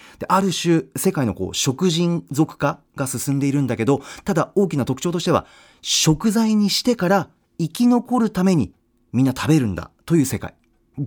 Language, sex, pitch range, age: Japanese, male, 120-205 Hz, 40-59